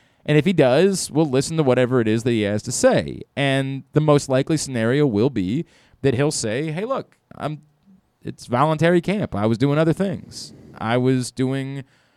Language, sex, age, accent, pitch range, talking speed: English, male, 30-49, American, 115-150 Hz, 190 wpm